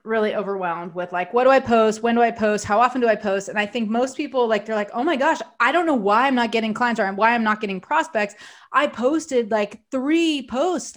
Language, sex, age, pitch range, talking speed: English, female, 30-49, 210-260 Hz, 255 wpm